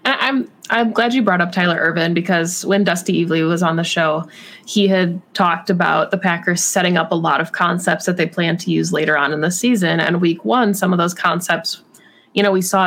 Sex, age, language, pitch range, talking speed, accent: female, 20-39, English, 170-195 Hz, 235 wpm, American